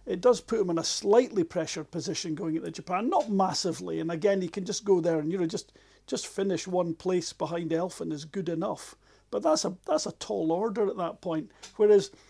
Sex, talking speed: male, 220 wpm